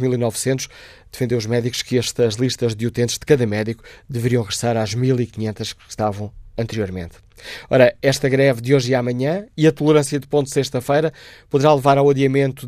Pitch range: 120-145 Hz